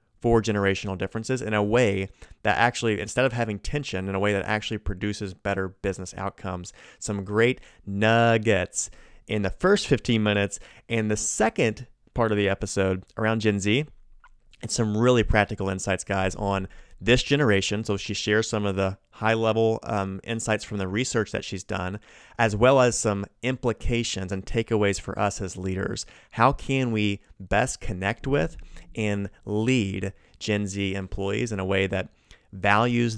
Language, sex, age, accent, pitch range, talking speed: English, male, 30-49, American, 100-115 Hz, 160 wpm